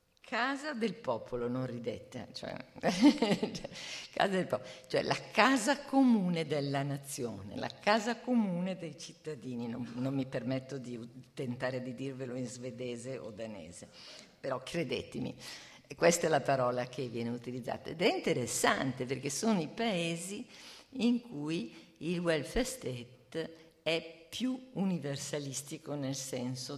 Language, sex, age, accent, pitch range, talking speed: Italian, female, 50-69, native, 125-175 Hz, 125 wpm